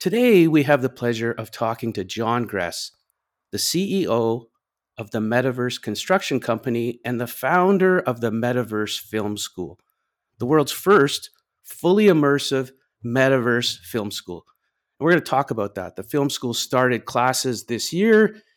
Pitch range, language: 115-155 Hz, English